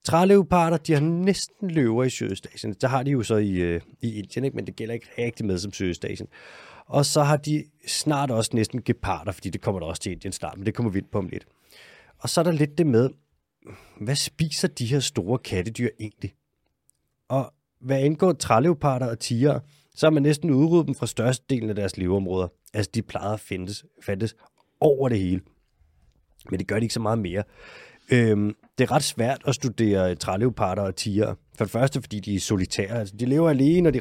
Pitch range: 100-140 Hz